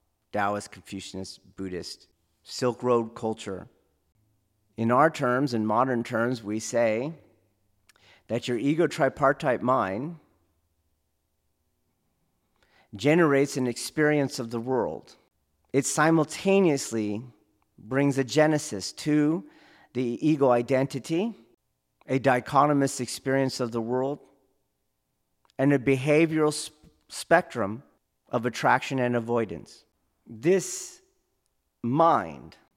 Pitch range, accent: 100-145 Hz, American